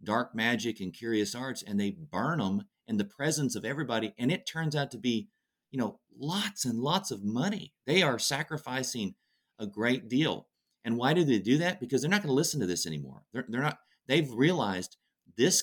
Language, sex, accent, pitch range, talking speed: English, male, American, 100-135 Hz, 205 wpm